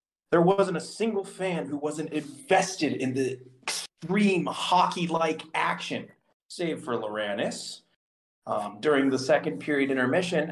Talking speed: 125 wpm